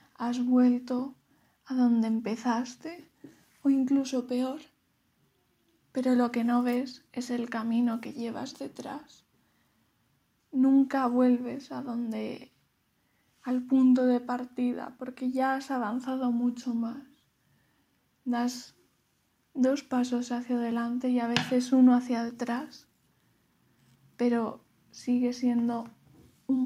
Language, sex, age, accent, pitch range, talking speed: Spanish, female, 10-29, Spanish, 245-265 Hz, 110 wpm